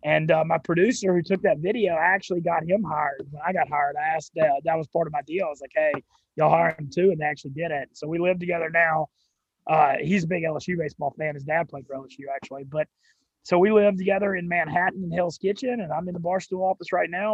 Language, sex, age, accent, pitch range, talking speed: English, male, 20-39, American, 155-180 Hz, 270 wpm